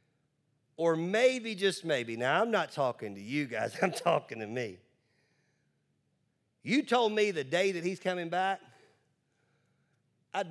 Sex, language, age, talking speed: male, English, 40-59, 145 wpm